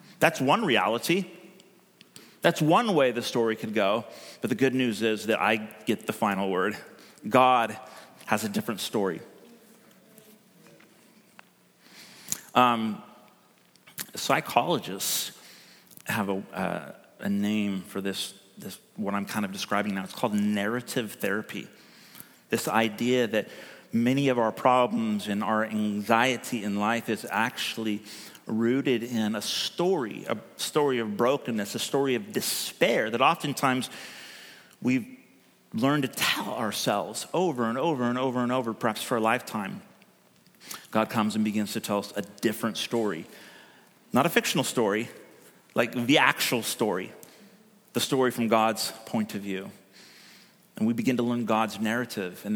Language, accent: English, American